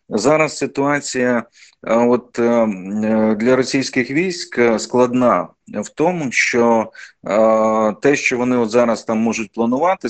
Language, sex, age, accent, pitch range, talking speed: Ukrainian, male, 30-49, native, 105-125 Hz, 105 wpm